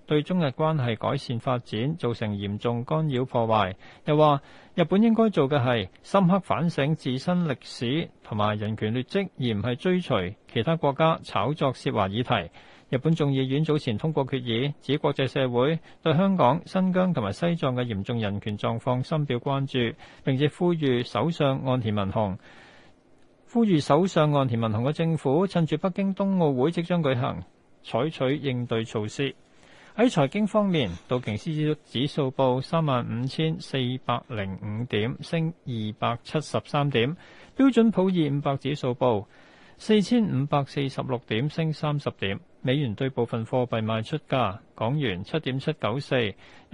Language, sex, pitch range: Chinese, male, 120-160 Hz